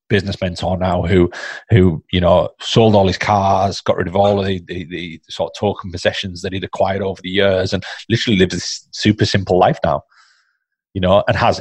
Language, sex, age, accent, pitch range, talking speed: English, male, 30-49, British, 90-100 Hz, 205 wpm